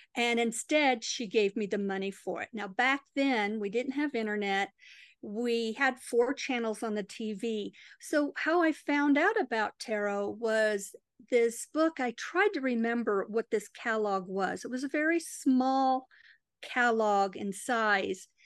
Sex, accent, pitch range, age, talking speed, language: female, American, 215-265 Hz, 50-69, 160 wpm, English